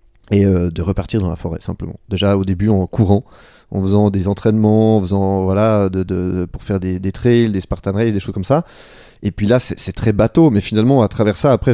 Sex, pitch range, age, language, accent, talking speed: male, 95-120 Hz, 20-39, French, French, 245 wpm